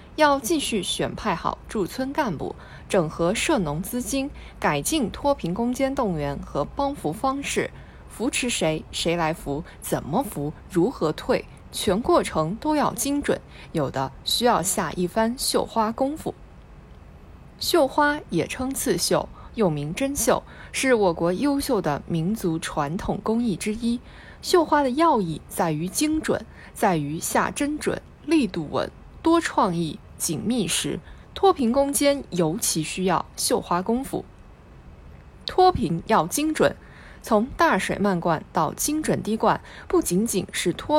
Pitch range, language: 170-275 Hz, Chinese